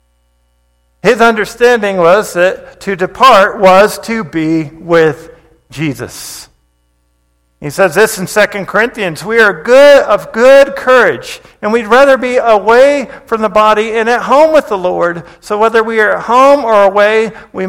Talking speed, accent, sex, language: 155 wpm, American, male, English